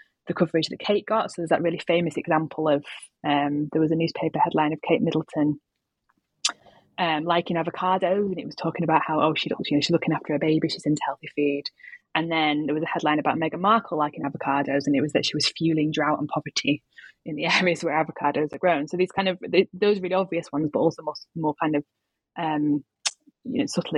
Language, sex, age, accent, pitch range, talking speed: English, female, 20-39, British, 150-180 Hz, 220 wpm